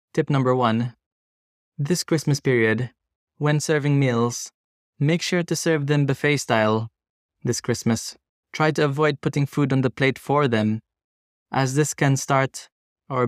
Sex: male